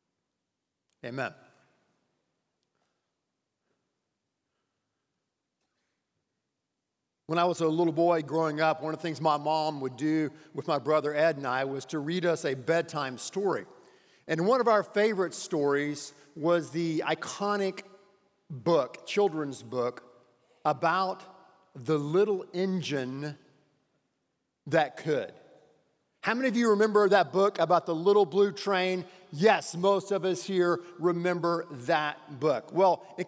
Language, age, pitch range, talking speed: English, 50-69, 155-200 Hz, 125 wpm